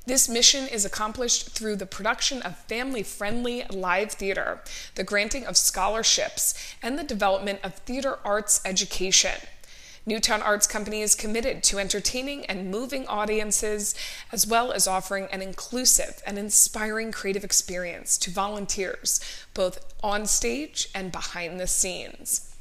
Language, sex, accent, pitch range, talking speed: English, female, American, 195-240 Hz, 135 wpm